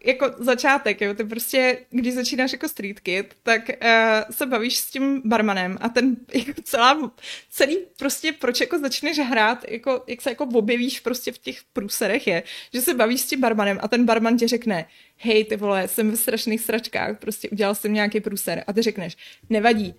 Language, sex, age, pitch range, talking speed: Czech, female, 20-39, 220-265 Hz, 190 wpm